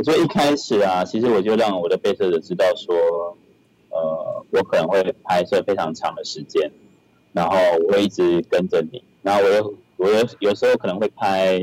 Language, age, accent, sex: Chinese, 30-49, native, male